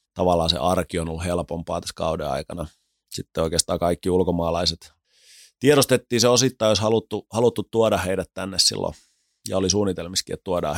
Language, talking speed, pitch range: Finnish, 155 wpm, 85-100 Hz